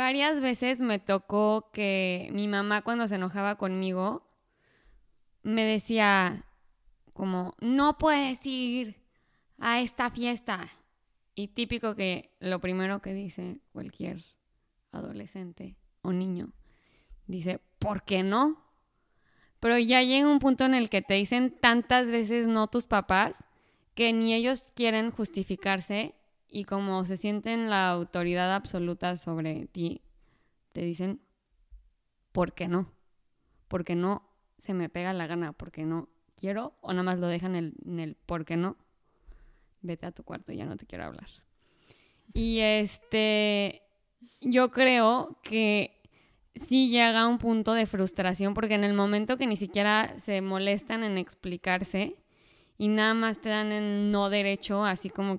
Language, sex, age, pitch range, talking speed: Spanish, female, 20-39, 185-230 Hz, 145 wpm